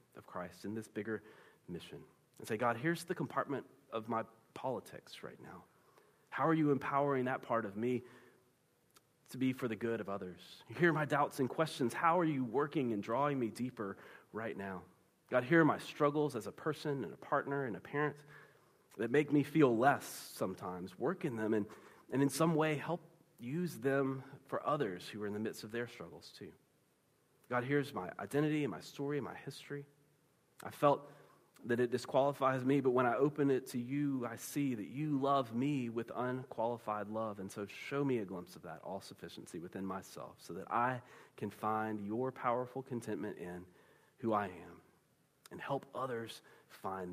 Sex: male